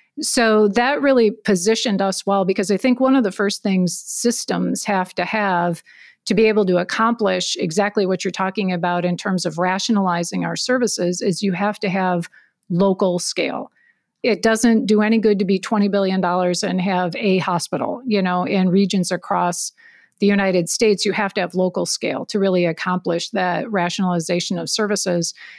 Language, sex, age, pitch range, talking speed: English, female, 40-59, 185-225 Hz, 175 wpm